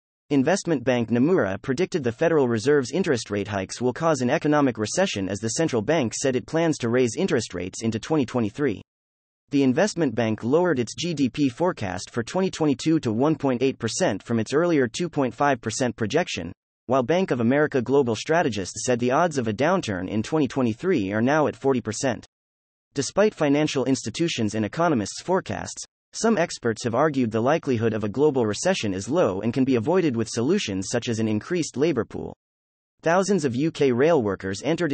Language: English